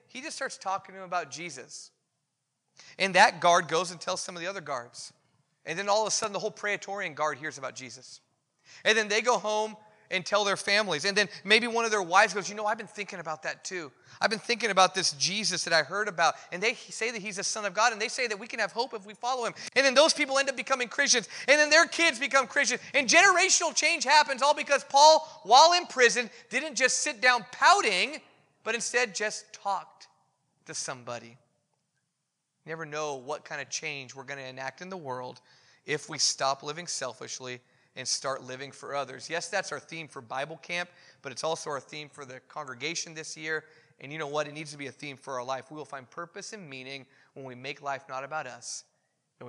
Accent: American